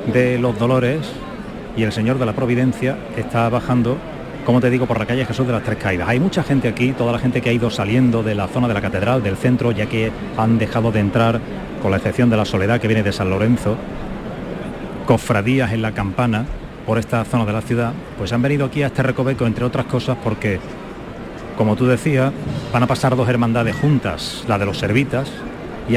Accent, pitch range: Spanish, 110-125 Hz